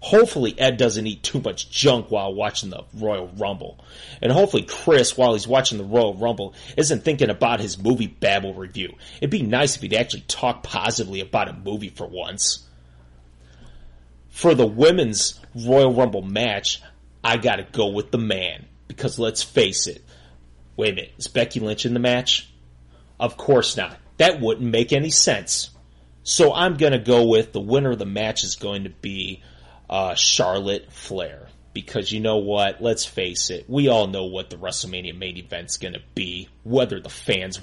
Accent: American